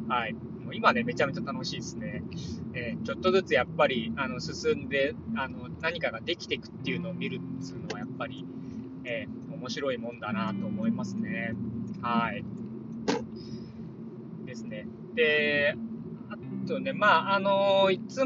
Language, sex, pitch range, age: Japanese, male, 155-235 Hz, 20-39